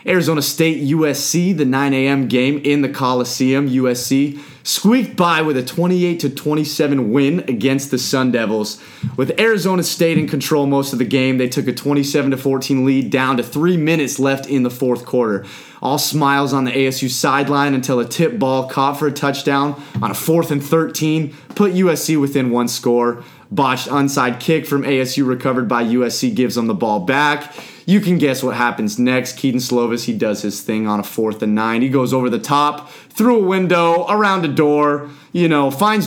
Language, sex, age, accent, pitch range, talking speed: English, male, 30-49, American, 125-150 Hz, 185 wpm